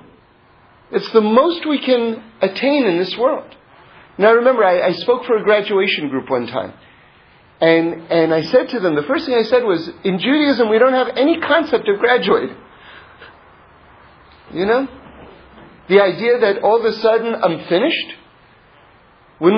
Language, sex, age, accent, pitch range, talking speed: English, male, 40-59, American, 205-270 Hz, 160 wpm